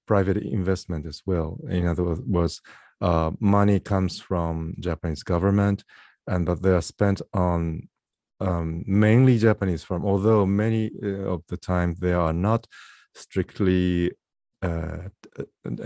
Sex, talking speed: male, 125 wpm